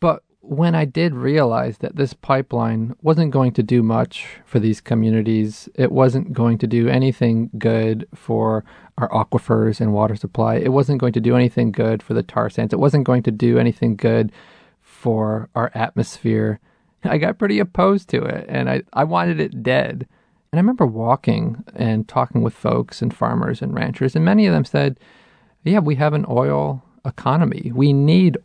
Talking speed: 180 wpm